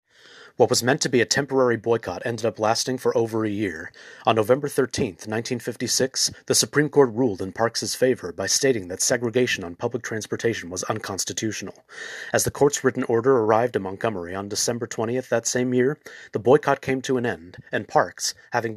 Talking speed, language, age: 185 wpm, English, 30-49